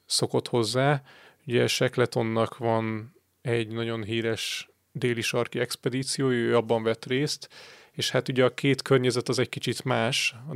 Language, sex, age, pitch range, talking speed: Hungarian, male, 30-49, 115-130 Hz, 150 wpm